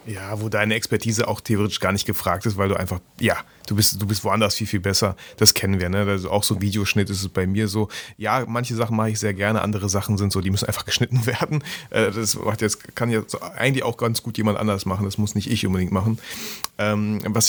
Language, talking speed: German, 235 wpm